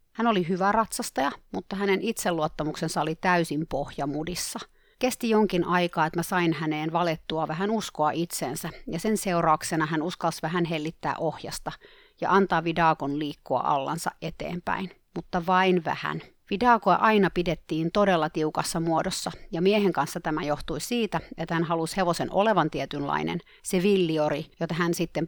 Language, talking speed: Finnish, 145 wpm